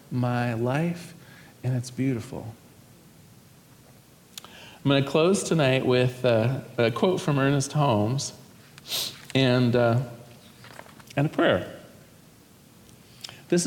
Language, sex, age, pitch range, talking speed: English, male, 40-59, 120-150 Hz, 100 wpm